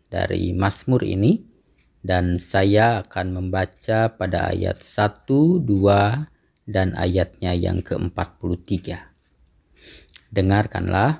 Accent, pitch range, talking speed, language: native, 90-115 Hz, 90 wpm, Indonesian